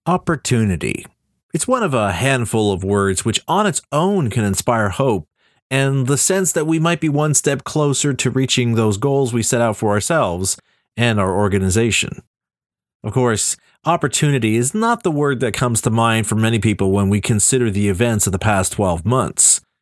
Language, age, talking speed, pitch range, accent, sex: English, 30-49, 185 wpm, 115-155 Hz, American, male